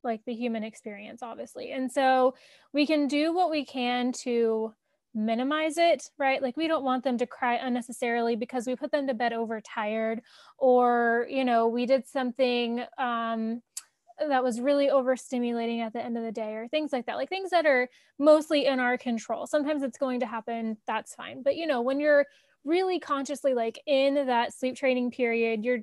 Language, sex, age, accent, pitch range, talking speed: English, female, 10-29, American, 240-285 Hz, 190 wpm